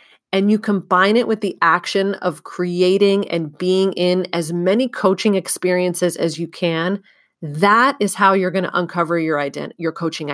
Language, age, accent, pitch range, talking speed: English, 30-49, American, 175-225 Hz, 175 wpm